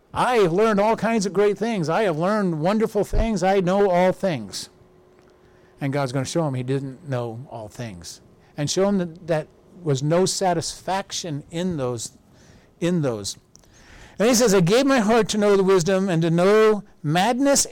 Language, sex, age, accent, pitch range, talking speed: English, male, 50-69, American, 145-200 Hz, 185 wpm